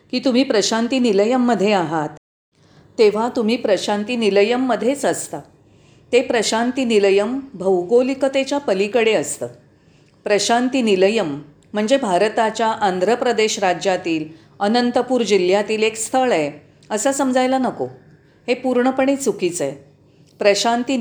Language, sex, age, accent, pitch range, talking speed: Marathi, female, 40-59, native, 155-240 Hz, 105 wpm